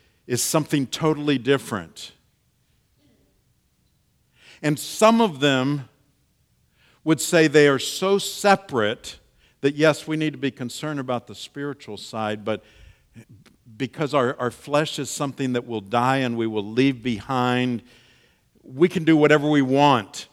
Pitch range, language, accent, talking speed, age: 100-145 Hz, English, American, 135 wpm, 50-69